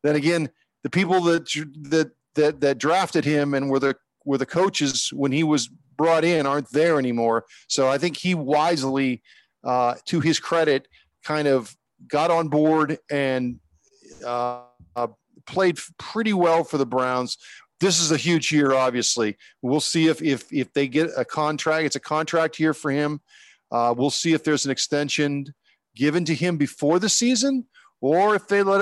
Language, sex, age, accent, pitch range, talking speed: English, male, 40-59, American, 135-170 Hz, 175 wpm